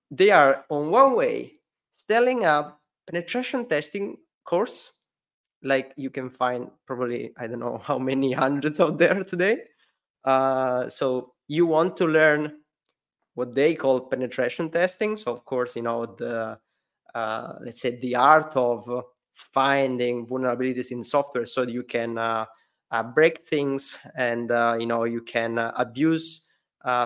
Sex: male